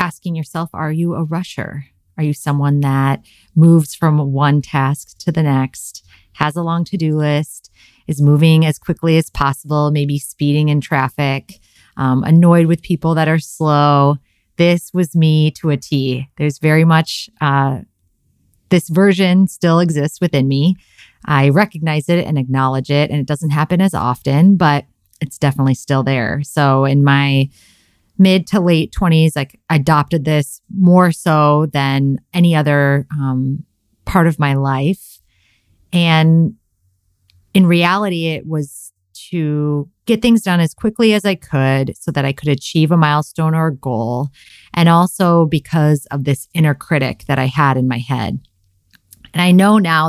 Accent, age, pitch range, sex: American, 30-49, 135-165 Hz, female